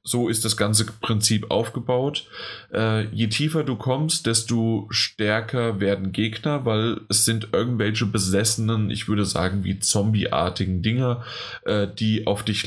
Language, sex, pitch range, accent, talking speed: German, male, 100-120 Hz, German, 140 wpm